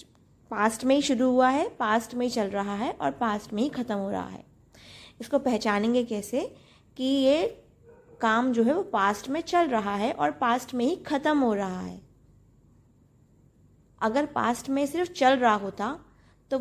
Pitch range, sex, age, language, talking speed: 210-255 Hz, female, 20-39, Hindi, 180 wpm